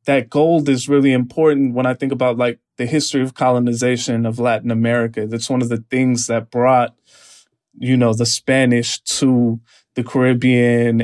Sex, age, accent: male, 20-39, American